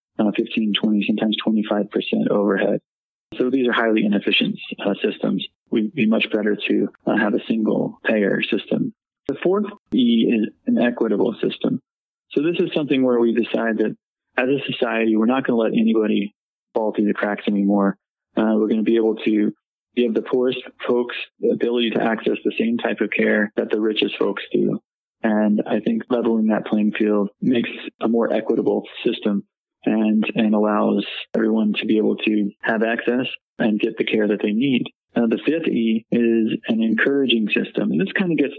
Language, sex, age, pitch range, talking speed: English, male, 20-39, 110-120 Hz, 185 wpm